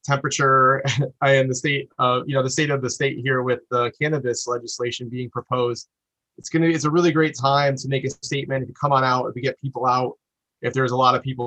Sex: male